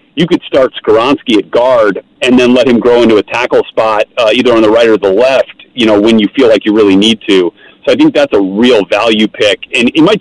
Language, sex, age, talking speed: English, male, 40-59, 260 wpm